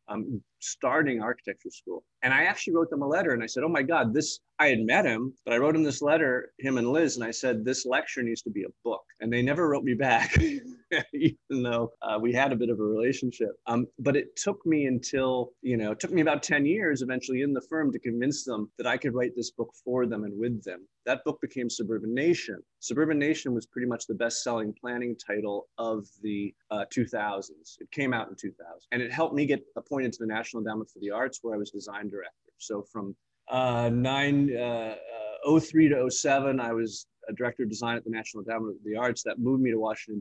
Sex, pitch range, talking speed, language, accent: male, 110-135 Hz, 235 wpm, English, American